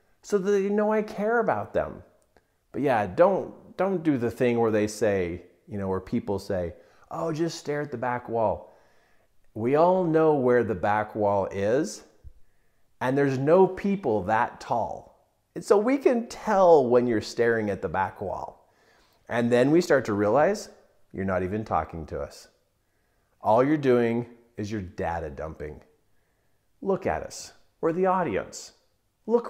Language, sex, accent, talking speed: English, male, American, 165 wpm